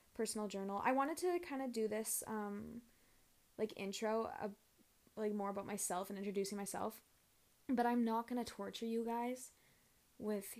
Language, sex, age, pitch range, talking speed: English, female, 10-29, 200-230 Hz, 160 wpm